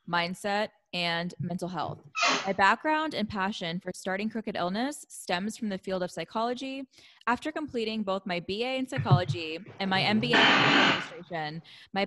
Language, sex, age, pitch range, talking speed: English, female, 20-39, 175-225 Hz, 155 wpm